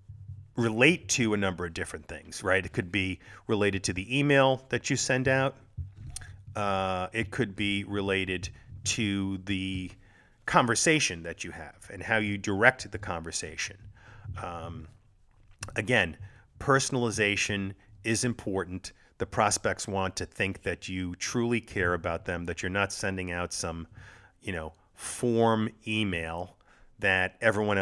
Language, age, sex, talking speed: English, 40-59, male, 140 wpm